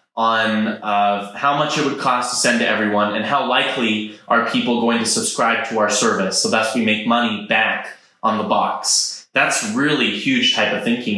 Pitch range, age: 110-140 Hz, 20-39